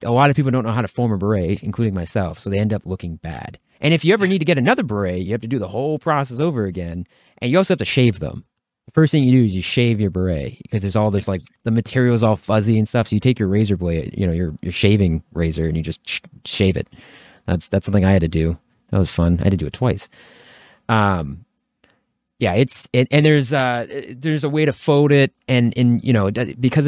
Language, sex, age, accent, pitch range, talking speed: English, male, 30-49, American, 95-125 Hz, 260 wpm